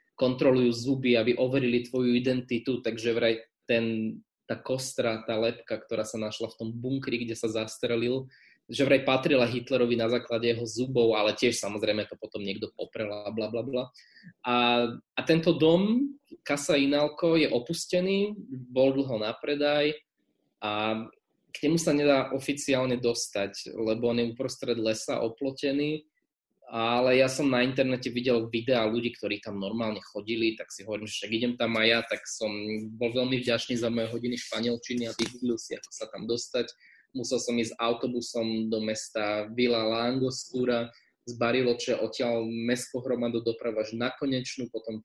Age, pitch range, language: 20-39, 115-130 Hz, Slovak